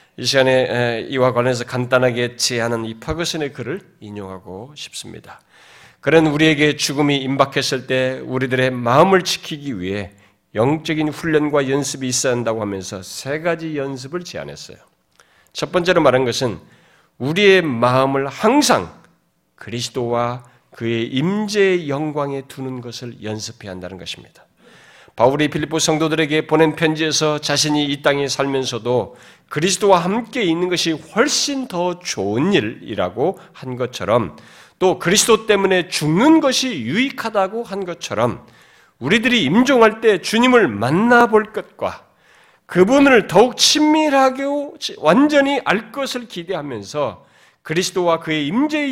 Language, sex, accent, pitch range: Korean, male, native, 125-195 Hz